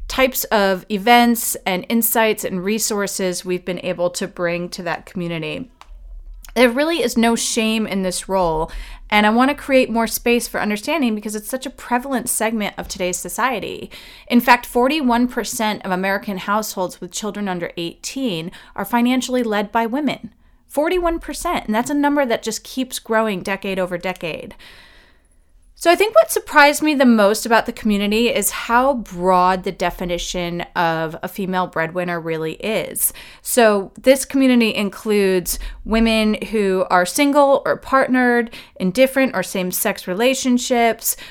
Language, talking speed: English, 155 wpm